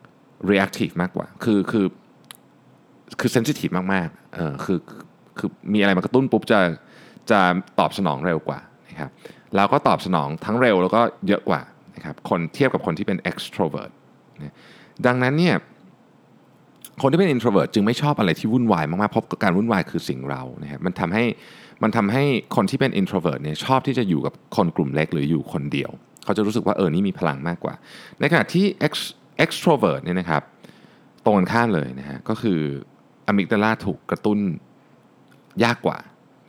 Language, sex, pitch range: Thai, male, 85-125 Hz